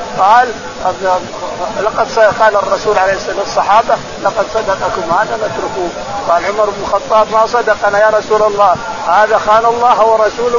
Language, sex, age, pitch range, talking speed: Arabic, male, 50-69, 205-245 Hz, 145 wpm